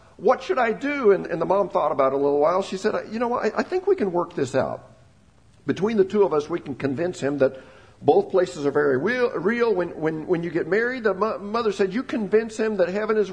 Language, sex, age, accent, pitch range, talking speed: English, male, 50-69, American, 140-215 Hz, 255 wpm